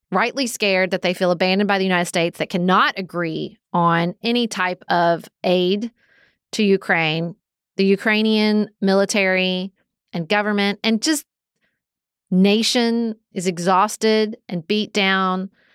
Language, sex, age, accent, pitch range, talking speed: English, female, 30-49, American, 180-225 Hz, 125 wpm